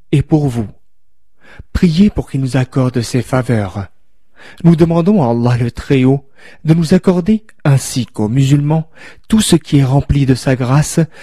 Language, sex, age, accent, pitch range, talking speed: French, male, 40-59, French, 130-170 Hz, 160 wpm